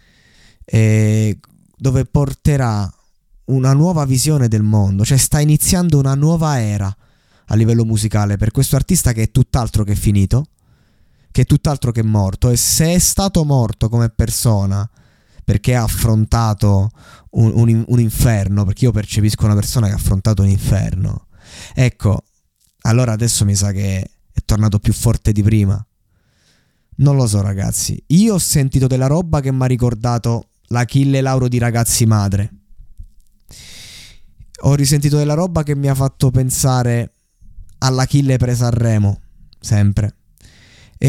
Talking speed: 145 wpm